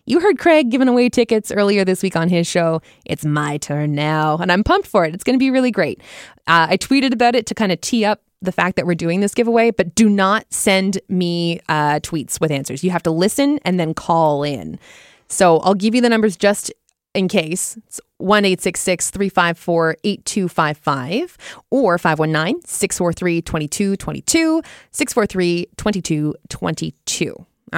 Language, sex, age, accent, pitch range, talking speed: English, female, 20-39, American, 165-220 Hz, 160 wpm